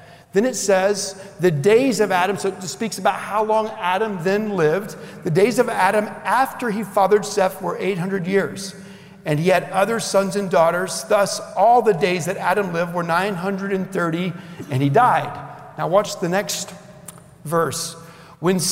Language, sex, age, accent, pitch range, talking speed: English, male, 50-69, American, 165-205 Hz, 165 wpm